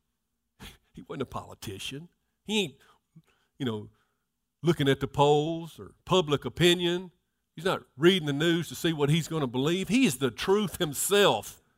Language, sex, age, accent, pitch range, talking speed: English, male, 50-69, American, 140-225 Hz, 165 wpm